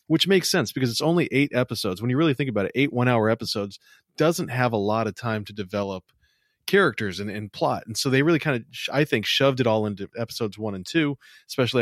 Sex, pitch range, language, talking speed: male, 110-135 Hz, English, 235 wpm